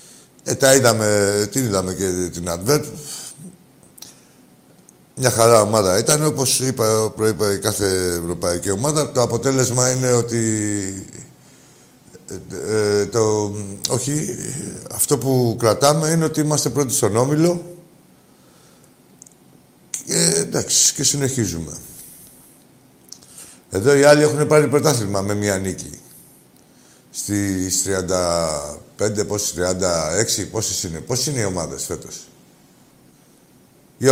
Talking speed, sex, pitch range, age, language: 105 wpm, male, 105-145 Hz, 60-79, Greek